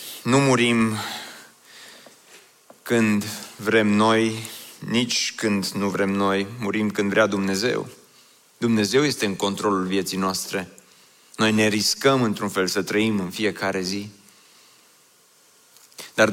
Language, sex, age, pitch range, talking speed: Romanian, male, 30-49, 100-120 Hz, 115 wpm